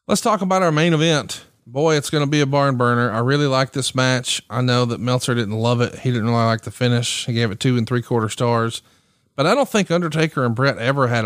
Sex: male